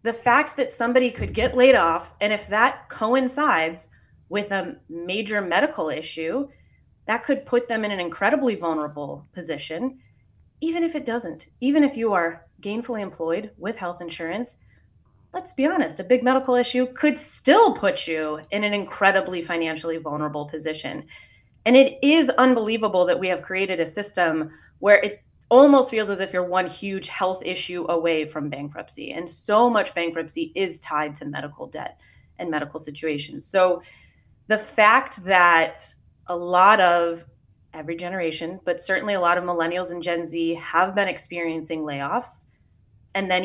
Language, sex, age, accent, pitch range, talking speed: English, female, 20-39, American, 165-220 Hz, 160 wpm